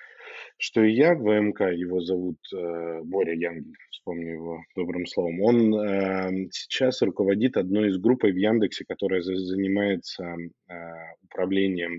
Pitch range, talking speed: 85-105 Hz, 120 wpm